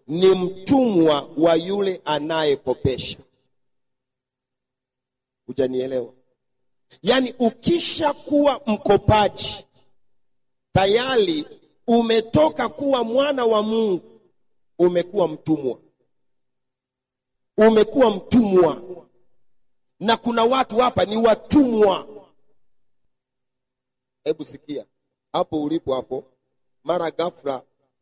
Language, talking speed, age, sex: Swahili, 65 wpm, 40-59, male